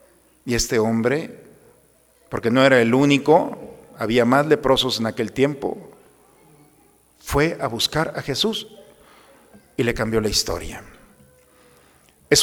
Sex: male